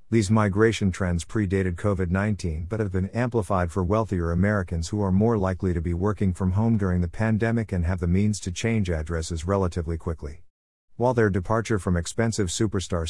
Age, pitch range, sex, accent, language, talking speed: 50-69, 90-110 Hz, male, American, English, 180 wpm